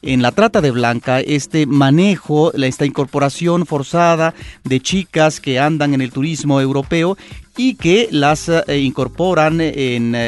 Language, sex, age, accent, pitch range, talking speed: Spanish, male, 40-59, Mexican, 135-185 Hz, 135 wpm